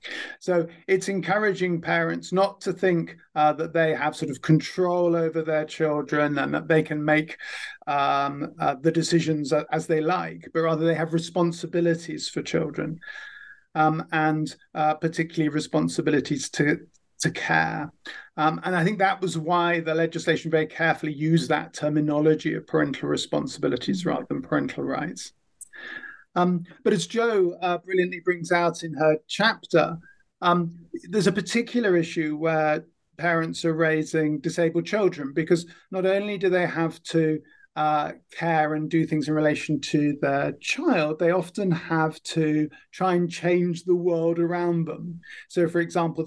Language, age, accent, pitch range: English, 50-69, British, 155-175 Hz